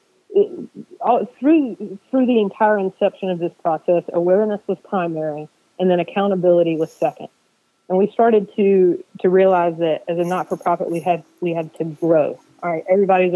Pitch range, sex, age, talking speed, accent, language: 170-195 Hz, female, 30-49, 175 wpm, American, English